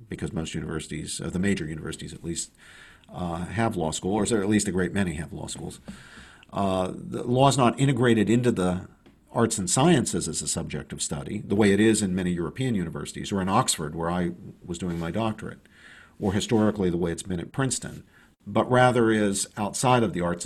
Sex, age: male, 50-69